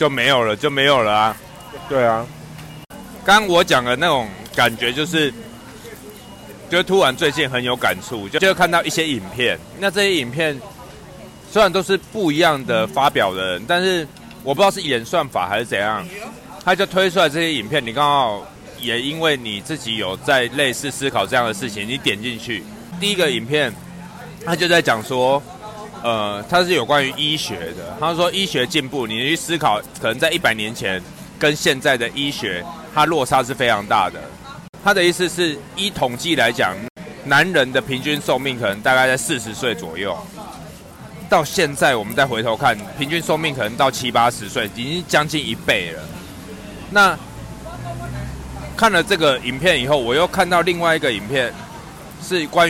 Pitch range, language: 125-175 Hz, Chinese